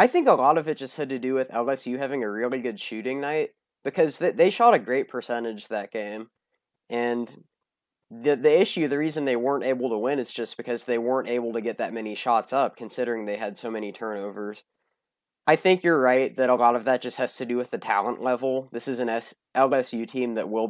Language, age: English, 20-39